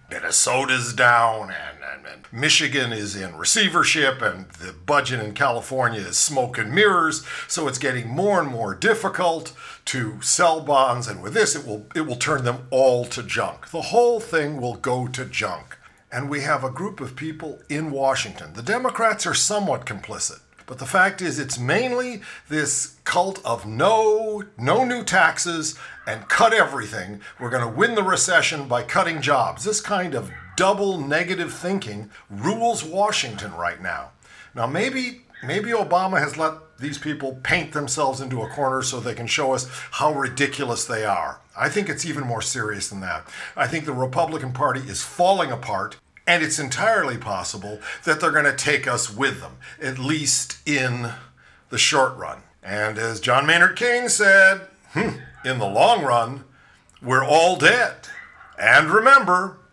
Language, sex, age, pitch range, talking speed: English, male, 50-69, 125-195 Hz, 170 wpm